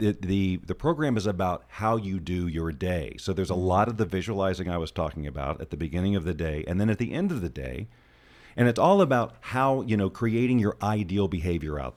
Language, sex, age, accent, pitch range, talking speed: English, male, 40-59, American, 85-115 Hz, 235 wpm